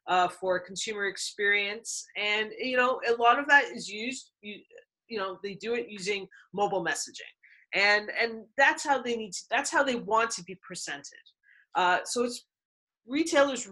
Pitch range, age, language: 180-240 Hz, 30-49, English